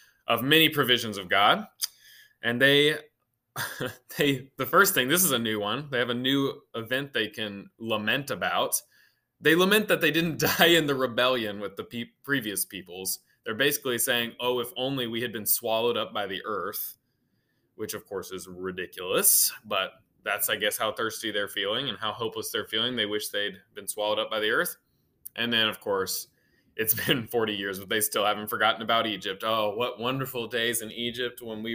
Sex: male